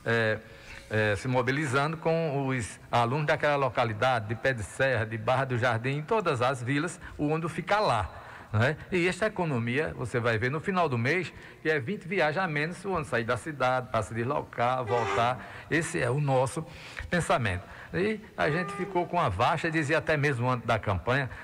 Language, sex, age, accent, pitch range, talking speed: Portuguese, male, 60-79, Brazilian, 120-155 Hz, 195 wpm